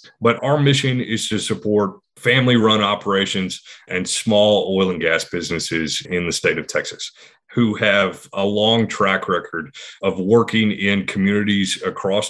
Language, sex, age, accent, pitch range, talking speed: English, male, 30-49, American, 95-110 Hz, 150 wpm